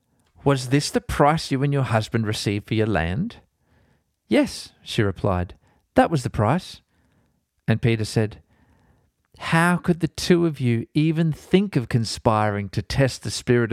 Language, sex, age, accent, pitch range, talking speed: English, male, 40-59, Australian, 100-135 Hz, 155 wpm